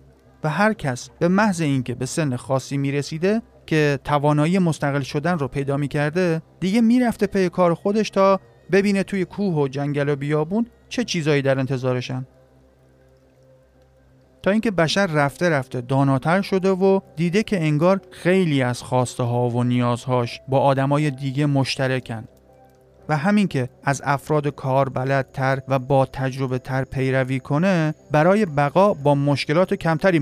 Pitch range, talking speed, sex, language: 130-180 Hz, 150 wpm, male, Persian